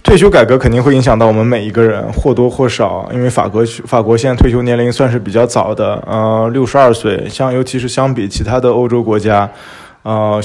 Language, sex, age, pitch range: Chinese, male, 20-39, 110-130 Hz